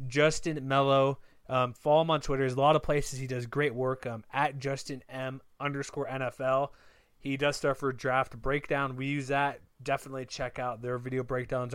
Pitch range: 125-140 Hz